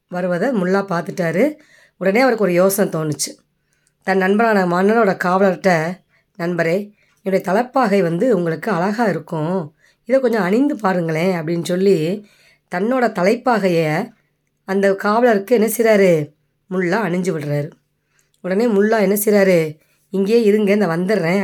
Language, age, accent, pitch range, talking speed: Tamil, 20-39, native, 170-210 Hz, 110 wpm